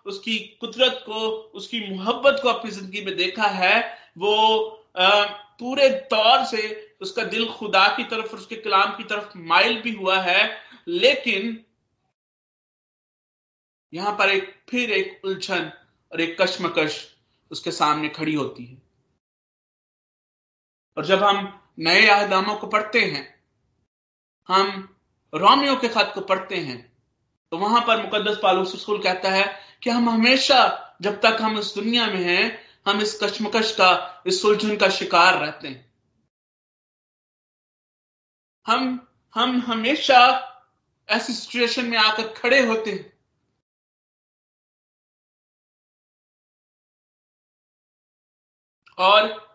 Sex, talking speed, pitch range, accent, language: male, 115 wpm, 185-230 Hz, native, Hindi